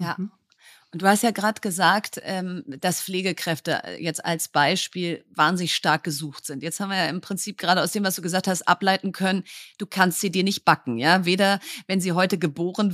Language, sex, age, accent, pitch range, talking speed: German, female, 30-49, German, 185-215 Hz, 205 wpm